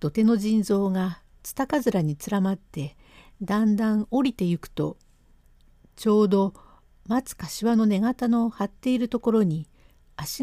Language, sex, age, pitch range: Japanese, female, 60-79, 160-240 Hz